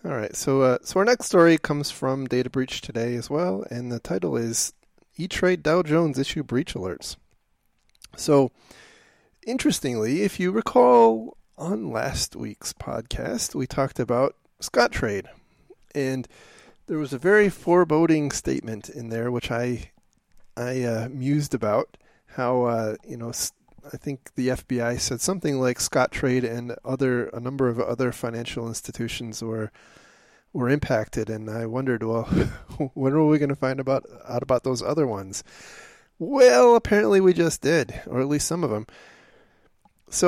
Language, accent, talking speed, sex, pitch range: English, American, 160 wpm, male, 120-155 Hz